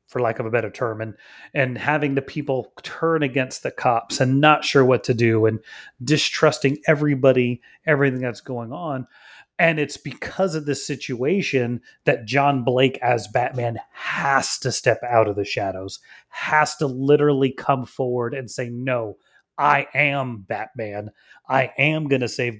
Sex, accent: male, American